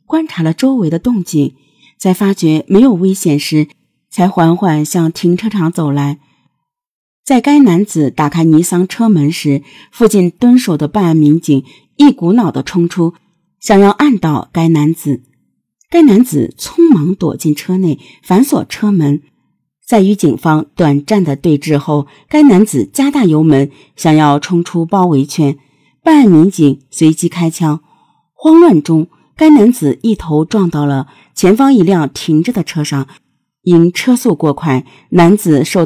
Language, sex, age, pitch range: Chinese, female, 50-69, 150-205 Hz